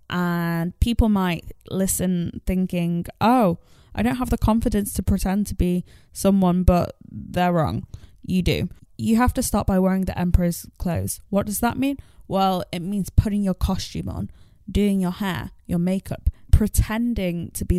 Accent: British